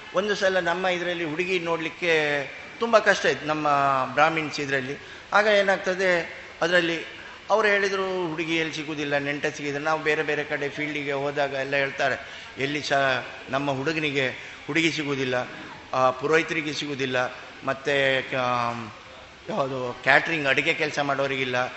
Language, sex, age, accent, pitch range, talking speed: Kannada, male, 20-39, native, 140-170 Hz, 115 wpm